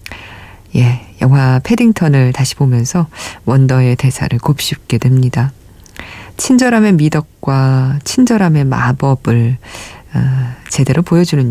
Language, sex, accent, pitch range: Korean, female, native, 125-180 Hz